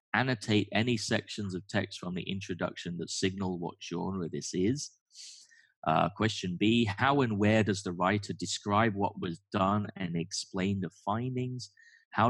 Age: 20-39